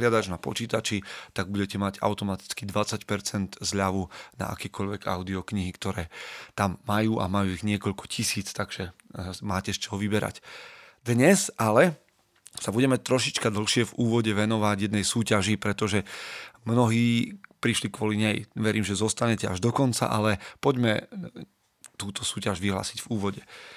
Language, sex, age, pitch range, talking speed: Slovak, male, 30-49, 105-115 Hz, 135 wpm